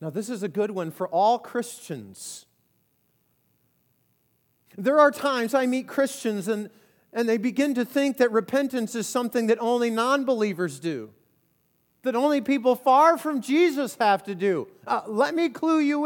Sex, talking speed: male, 160 wpm